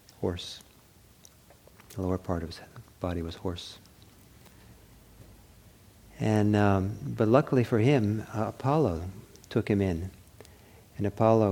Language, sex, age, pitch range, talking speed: English, male, 50-69, 95-110 Hz, 115 wpm